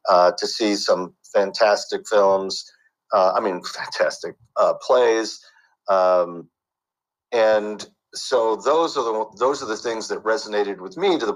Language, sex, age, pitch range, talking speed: English, male, 50-69, 95-135 Hz, 150 wpm